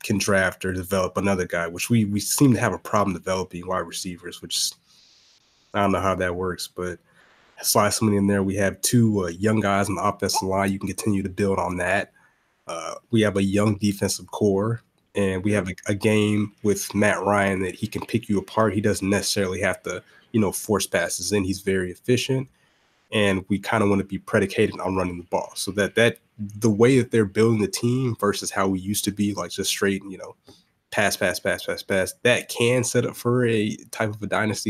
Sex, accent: male, American